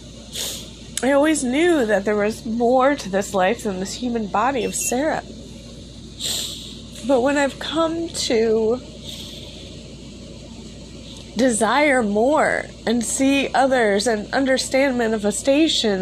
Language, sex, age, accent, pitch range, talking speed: English, female, 20-39, American, 210-270 Hz, 110 wpm